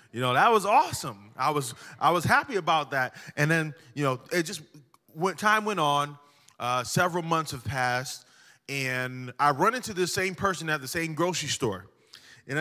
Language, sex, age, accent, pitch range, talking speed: English, male, 20-39, American, 135-190 Hz, 190 wpm